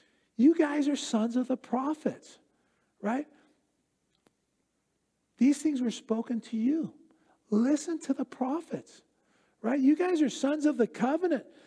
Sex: male